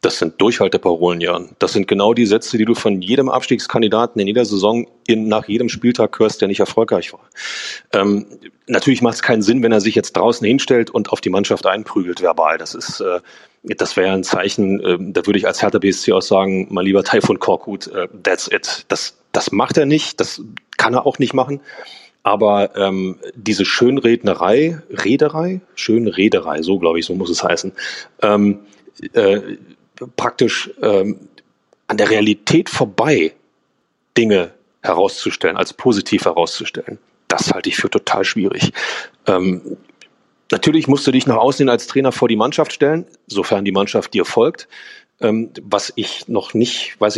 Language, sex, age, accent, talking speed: German, male, 30-49, German, 170 wpm